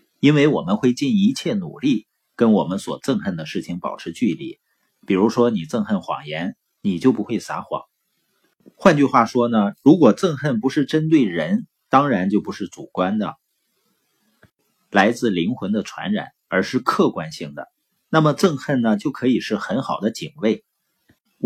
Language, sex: Chinese, male